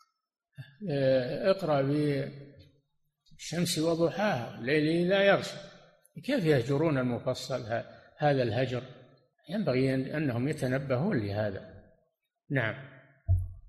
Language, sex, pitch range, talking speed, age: Arabic, male, 130-165 Hz, 70 wpm, 50-69